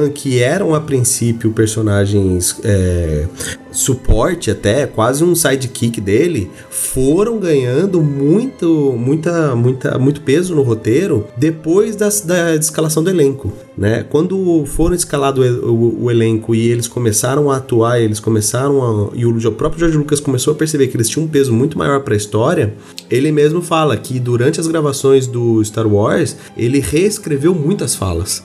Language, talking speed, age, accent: Portuguese, 145 wpm, 30-49, Brazilian